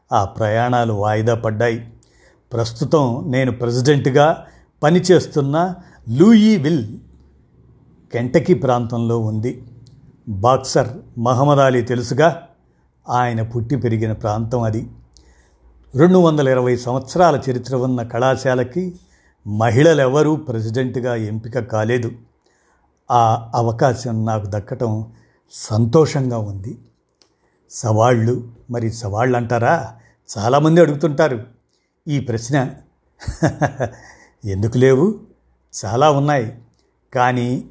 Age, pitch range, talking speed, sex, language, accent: 50-69, 115-140 Hz, 80 wpm, male, Telugu, native